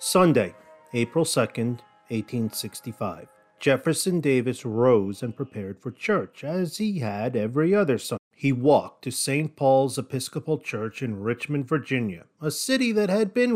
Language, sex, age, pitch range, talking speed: English, male, 40-59, 115-155 Hz, 140 wpm